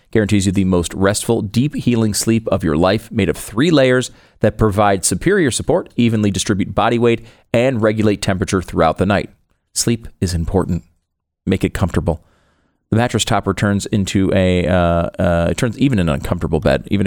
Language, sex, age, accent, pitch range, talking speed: English, male, 40-59, American, 90-115 Hz, 175 wpm